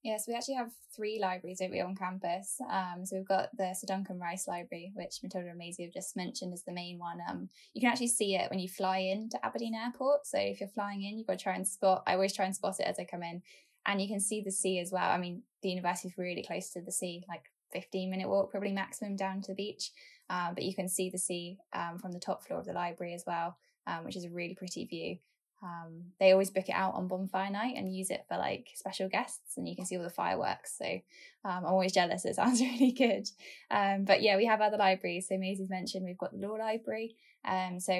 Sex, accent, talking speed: female, British, 260 wpm